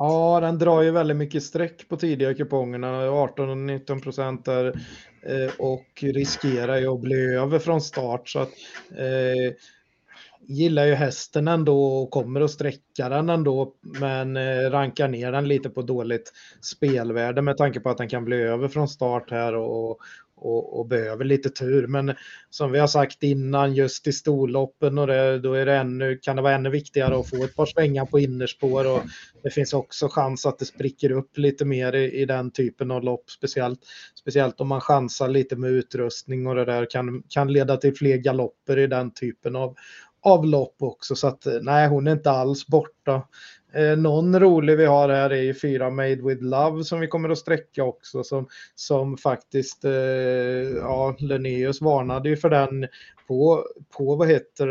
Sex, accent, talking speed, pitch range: male, native, 185 wpm, 130-145 Hz